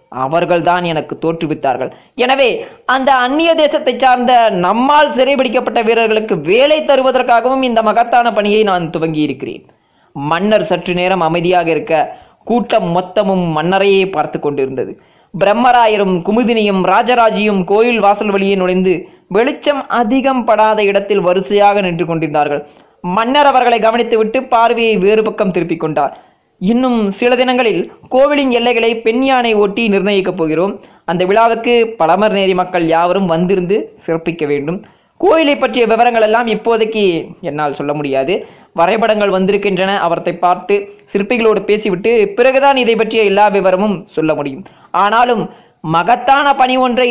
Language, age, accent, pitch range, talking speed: Tamil, 20-39, native, 180-235 Hz, 120 wpm